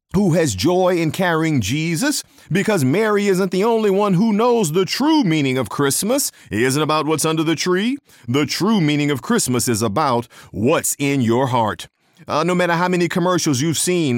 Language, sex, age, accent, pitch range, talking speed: English, male, 40-59, American, 135-195 Hz, 190 wpm